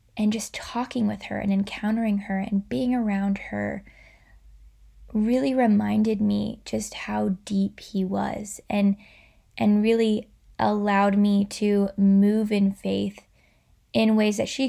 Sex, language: female, English